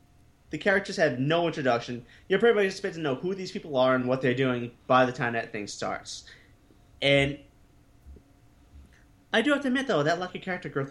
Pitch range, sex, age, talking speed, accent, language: 140-230 Hz, male, 30-49, 200 wpm, American, English